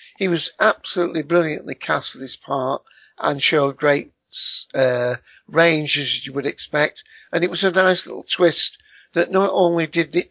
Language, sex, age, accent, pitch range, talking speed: English, male, 60-79, British, 140-170 Hz, 170 wpm